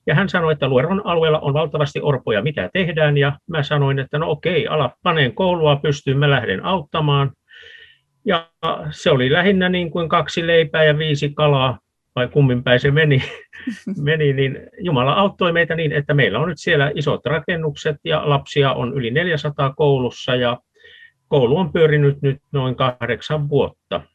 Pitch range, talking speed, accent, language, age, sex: 135-165 Hz, 165 wpm, native, Finnish, 50-69, male